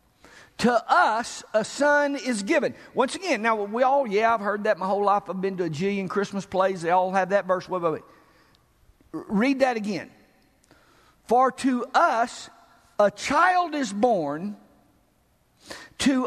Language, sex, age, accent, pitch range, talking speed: English, male, 50-69, American, 225-310 Hz, 160 wpm